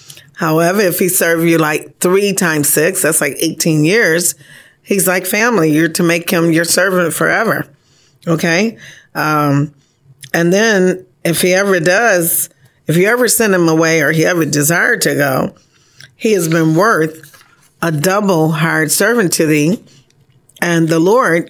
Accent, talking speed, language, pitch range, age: American, 155 wpm, English, 145-180 Hz, 40-59